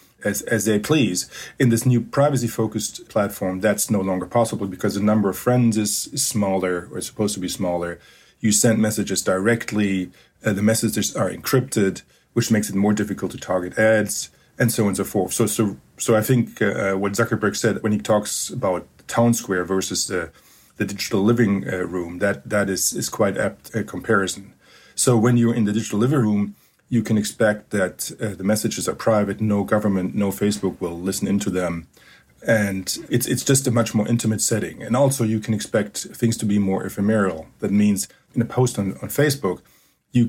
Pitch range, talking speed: 95-115 Hz, 200 wpm